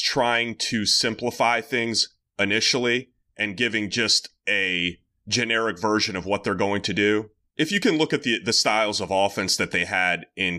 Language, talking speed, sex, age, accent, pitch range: English, 175 wpm, male, 30-49, American, 105-145 Hz